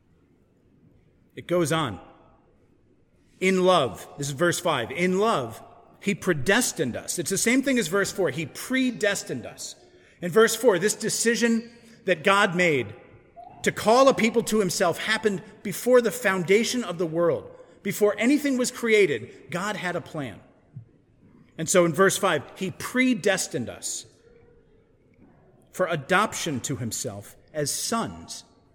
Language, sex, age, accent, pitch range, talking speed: English, male, 40-59, American, 160-220 Hz, 140 wpm